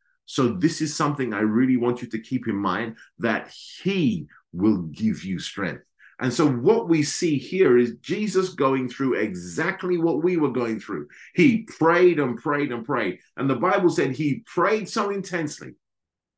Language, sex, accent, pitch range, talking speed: English, male, British, 125-170 Hz, 175 wpm